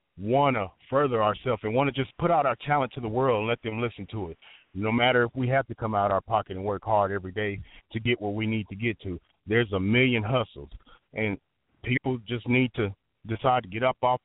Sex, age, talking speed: male, 30-49, 245 wpm